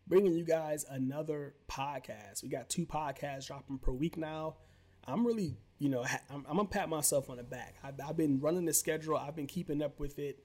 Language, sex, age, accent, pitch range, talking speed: English, male, 30-49, American, 130-160 Hz, 225 wpm